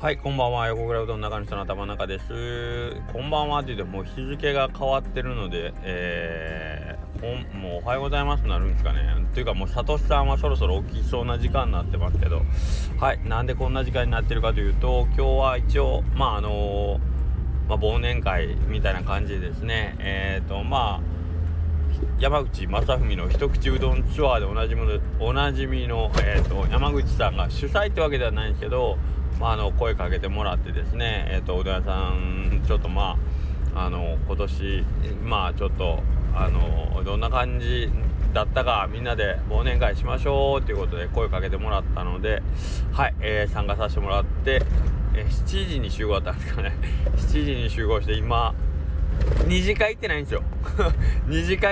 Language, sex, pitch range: Japanese, male, 65-100 Hz